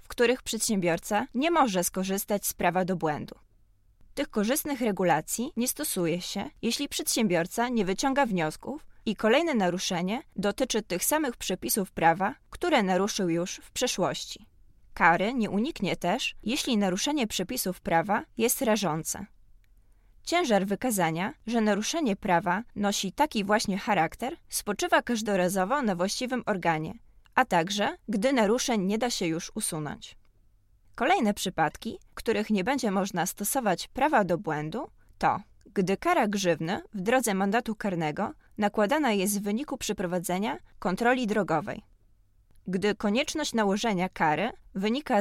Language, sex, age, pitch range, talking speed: Polish, female, 20-39, 180-235 Hz, 130 wpm